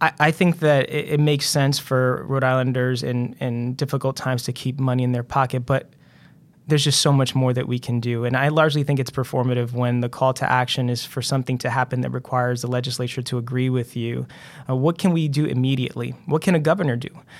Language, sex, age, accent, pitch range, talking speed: English, male, 20-39, American, 125-150 Hz, 220 wpm